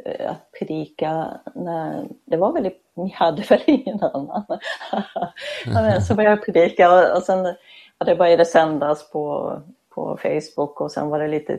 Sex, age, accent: female, 30-49, native